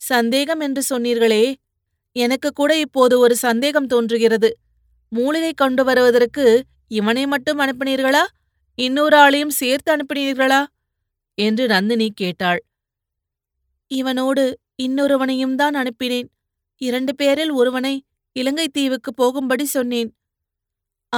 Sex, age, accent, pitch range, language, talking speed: female, 30-49, native, 240-280 Hz, Tamil, 90 wpm